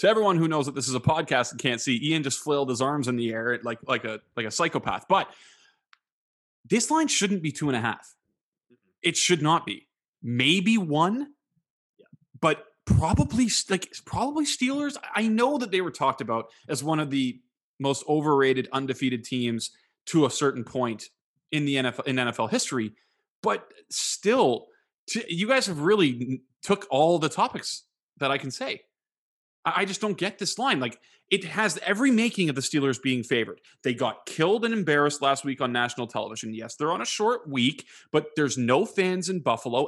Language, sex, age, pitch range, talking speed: English, male, 20-39, 130-205 Hz, 185 wpm